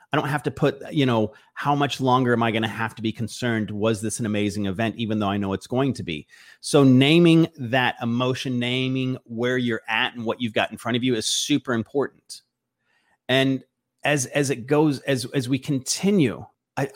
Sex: male